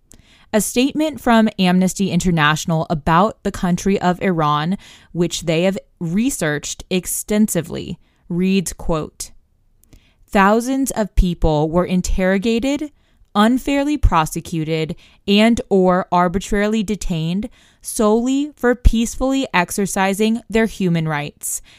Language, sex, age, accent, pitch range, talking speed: English, female, 20-39, American, 170-215 Hz, 95 wpm